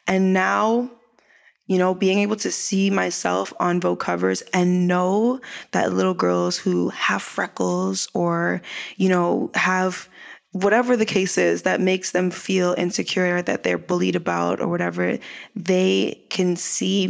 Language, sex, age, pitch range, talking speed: English, female, 20-39, 175-230 Hz, 150 wpm